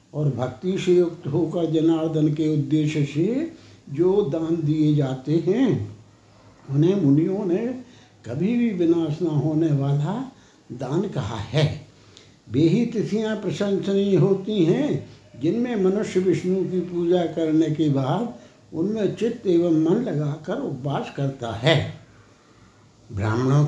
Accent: native